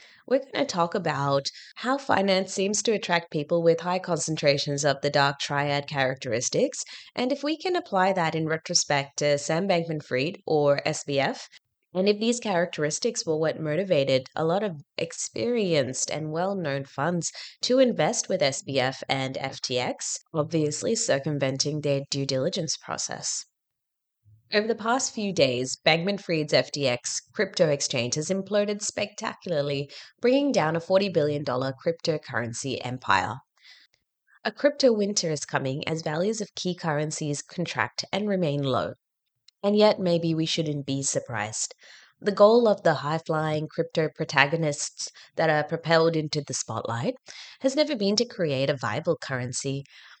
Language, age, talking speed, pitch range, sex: English, 20-39, 145 wpm, 140-195 Hz, female